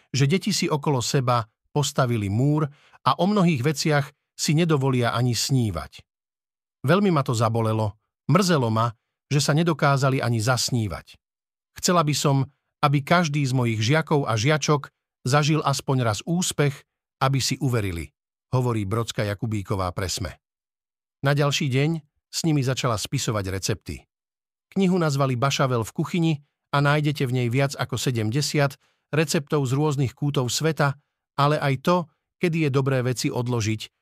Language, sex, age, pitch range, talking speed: Slovak, male, 50-69, 115-145 Hz, 140 wpm